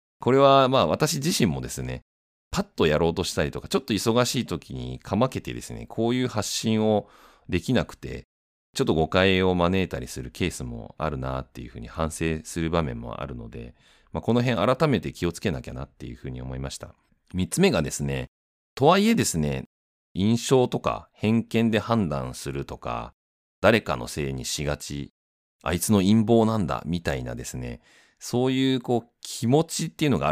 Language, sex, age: Japanese, male, 30-49